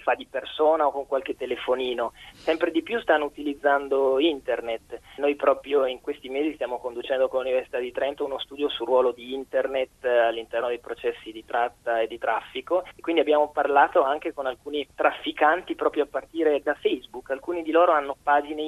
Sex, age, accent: male, 20-39, native